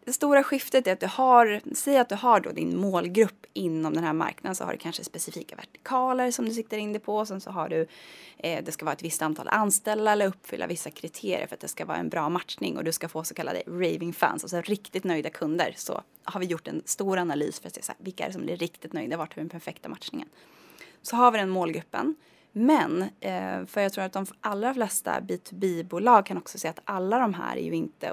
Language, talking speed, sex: English, 245 wpm, female